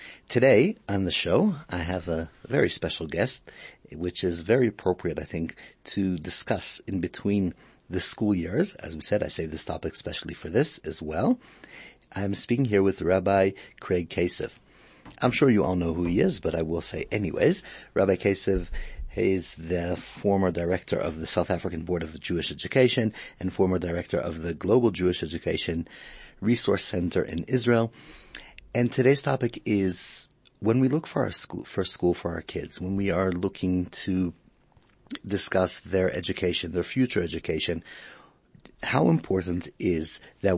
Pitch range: 85-100 Hz